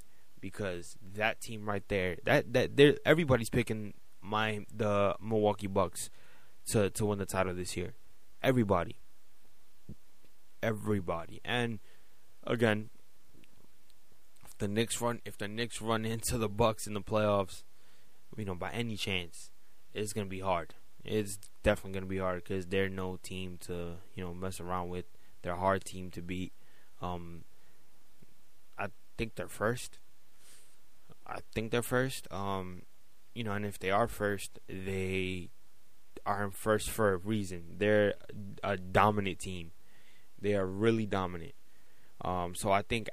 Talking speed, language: 145 wpm, English